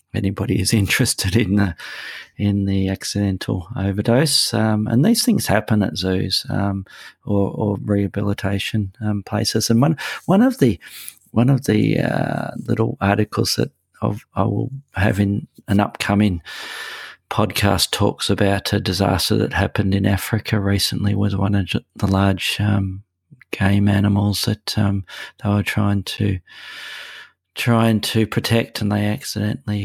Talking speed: 145 wpm